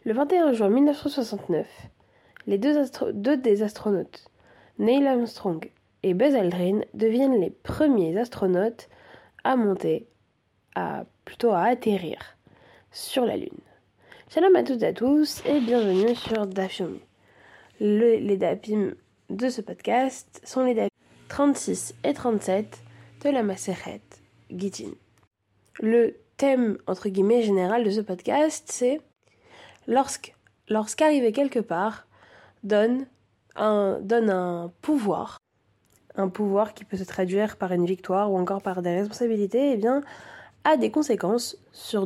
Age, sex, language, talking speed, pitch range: 20-39, female, French, 135 wpm, 190-260 Hz